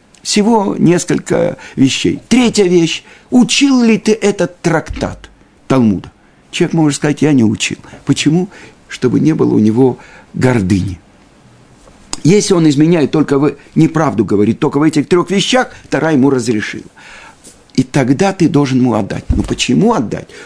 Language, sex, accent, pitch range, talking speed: Russian, male, native, 130-190 Hz, 145 wpm